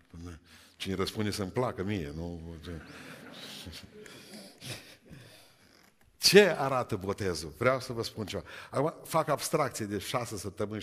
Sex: male